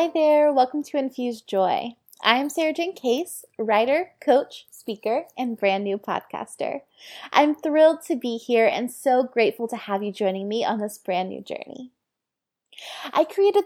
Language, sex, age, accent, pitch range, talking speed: English, female, 20-39, American, 210-275 Hz, 165 wpm